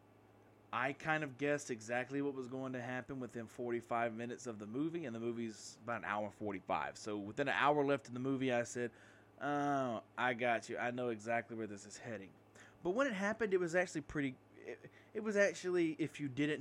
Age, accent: 20-39, American